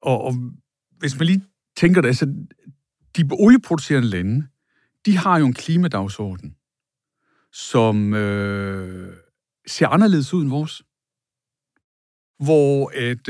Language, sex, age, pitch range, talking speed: Danish, male, 60-79, 110-155 Hz, 110 wpm